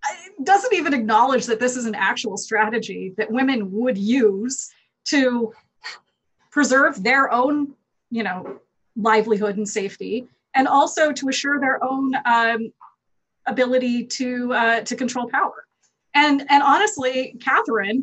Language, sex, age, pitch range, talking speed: English, female, 30-49, 200-255 Hz, 130 wpm